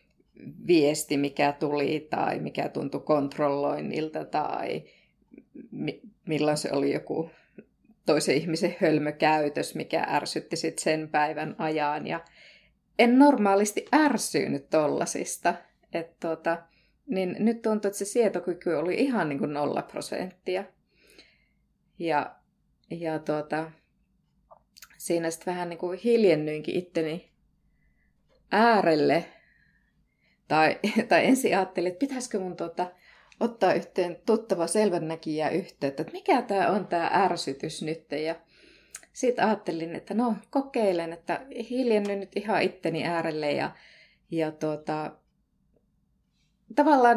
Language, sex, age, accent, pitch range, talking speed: Finnish, female, 20-39, native, 160-220 Hz, 110 wpm